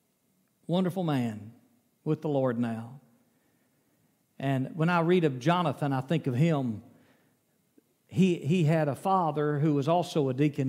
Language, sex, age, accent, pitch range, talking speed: English, male, 50-69, American, 135-170 Hz, 145 wpm